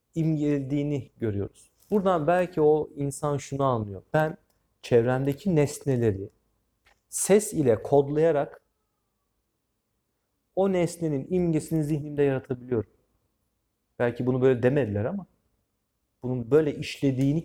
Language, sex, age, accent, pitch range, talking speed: Turkish, male, 40-59, native, 110-165 Hz, 95 wpm